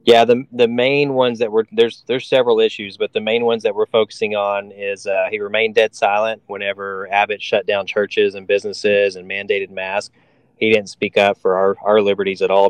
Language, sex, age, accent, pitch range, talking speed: English, male, 20-39, American, 100-125 Hz, 215 wpm